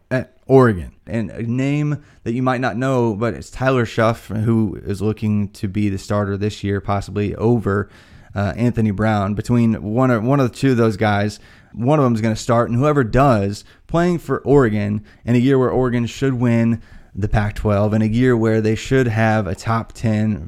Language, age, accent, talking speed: English, 20-39, American, 205 wpm